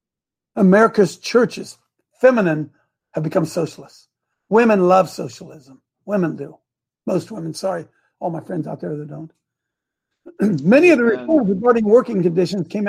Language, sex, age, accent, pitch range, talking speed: English, male, 60-79, American, 195-285 Hz, 135 wpm